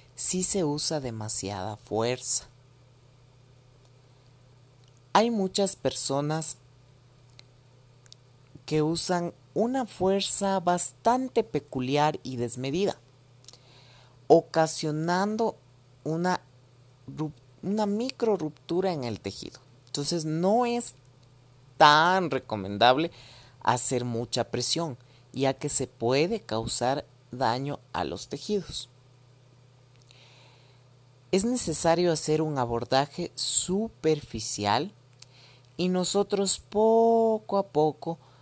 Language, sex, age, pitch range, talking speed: Spanish, male, 40-59, 125-165 Hz, 80 wpm